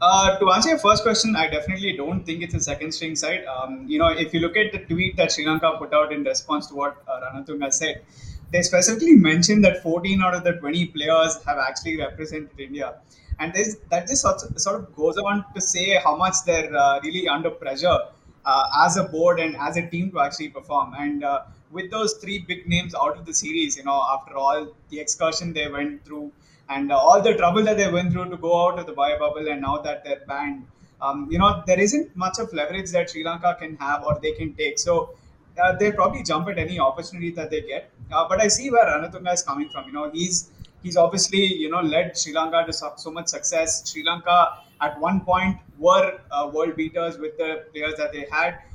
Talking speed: 230 wpm